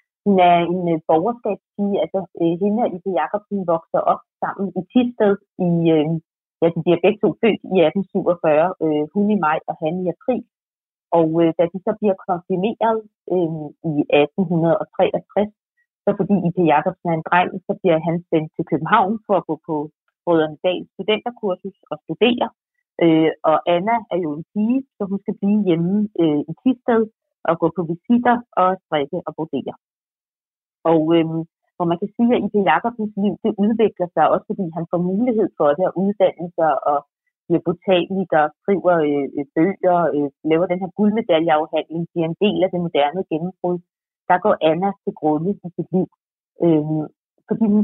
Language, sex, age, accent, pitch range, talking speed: Danish, female, 30-49, native, 160-205 Hz, 165 wpm